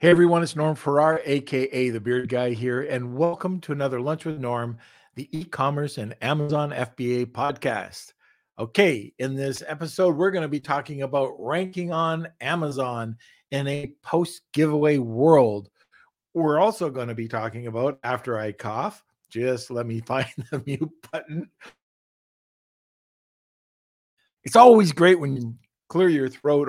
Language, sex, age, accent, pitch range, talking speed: English, male, 50-69, American, 120-150 Hz, 145 wpm